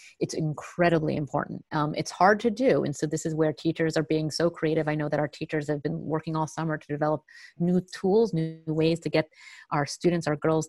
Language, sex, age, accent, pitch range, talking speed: English, female, 30-49, American, 155-180 Hz, 225 wpm